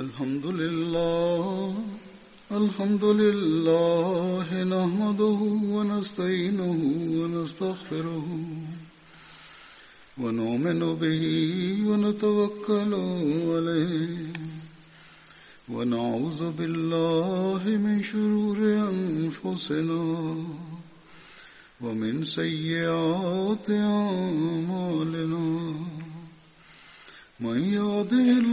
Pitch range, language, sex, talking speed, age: 160-205 Hz, Swahili, male, 50 wpm, 50-69